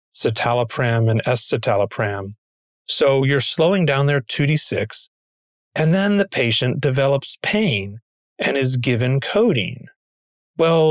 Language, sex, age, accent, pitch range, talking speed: English, male, 40-59, American, 115-155 Hz, 110 wpm